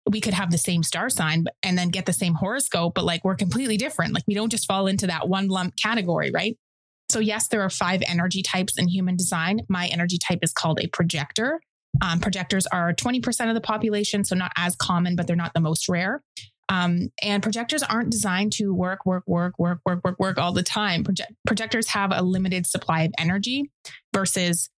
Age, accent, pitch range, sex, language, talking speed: 20-39, American, 170-200 Hz, female, English, 215 wpm